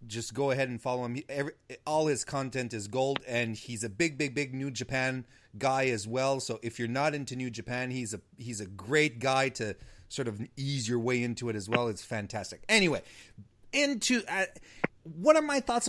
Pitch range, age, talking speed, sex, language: 115-150 Hz, 30-49, 205 wpm, male, English